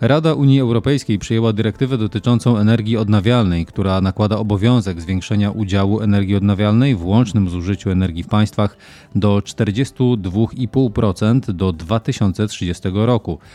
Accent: native